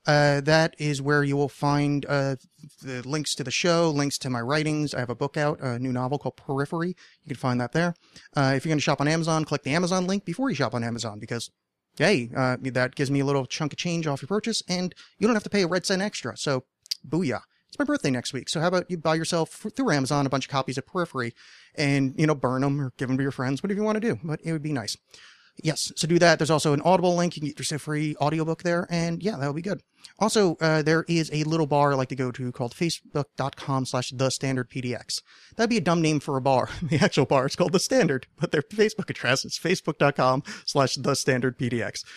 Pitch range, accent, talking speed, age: 135-170 Hz, American, 250 wpm, 30-49